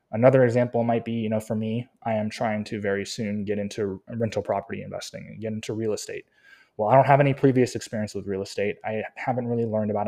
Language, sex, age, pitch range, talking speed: English, male, 20-39, 105-120 Hz, 230 wpm